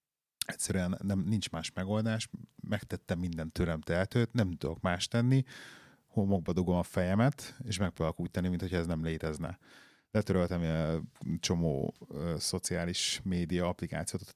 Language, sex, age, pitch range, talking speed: Hungarian, male, 30-49, 85-110 Hz, 130 wpm